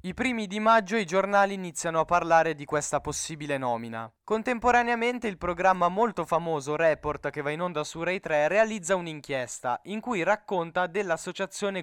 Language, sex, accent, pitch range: Italian, male, native, 155-190 Hz